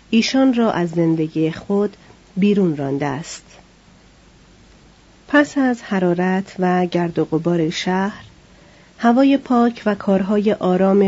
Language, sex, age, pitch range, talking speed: Persian, female, 40-59, 175-225 Hz, 115 wpm